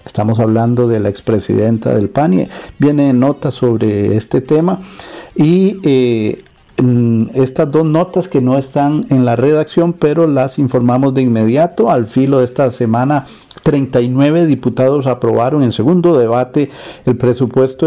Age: 50-69